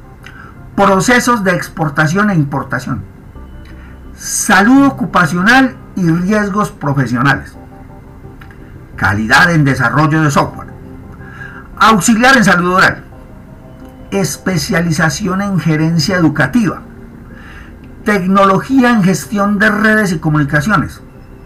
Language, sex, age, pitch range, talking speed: Spanish, male, 50-69, 135-185 Hz, 85 wpm